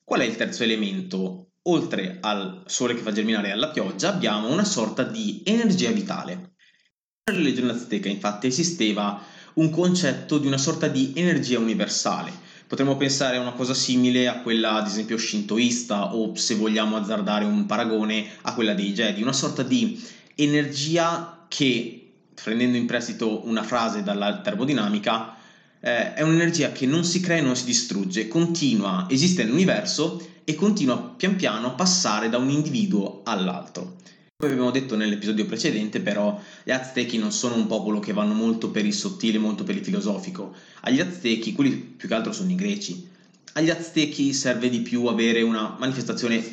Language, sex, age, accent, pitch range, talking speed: Italian, male, 20-39, native, 110-170 Hz, 165 wpm